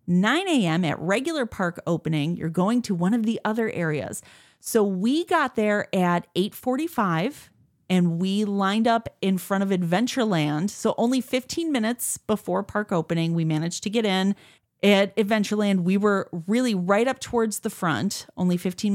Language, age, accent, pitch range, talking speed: English, 30-49, American, 175-220 Hz, 165 wpm